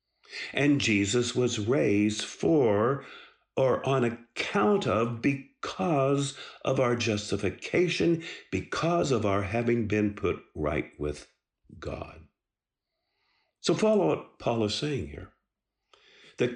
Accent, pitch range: American, 100-140 Hz